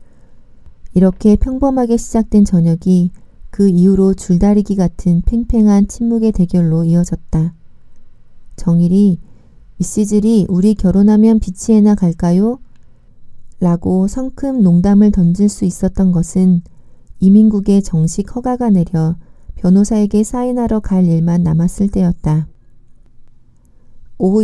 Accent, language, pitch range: native, Korean, 170-210 Hz